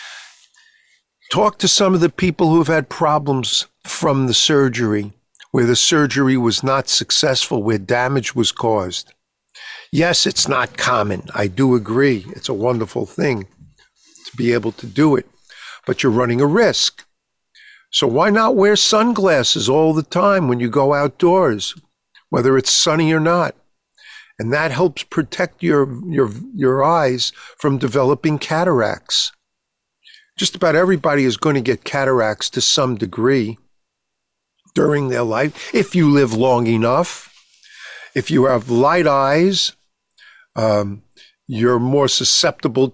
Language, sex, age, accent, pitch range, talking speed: English, male, 50-69, American, 120-165 Hz, 140 wpm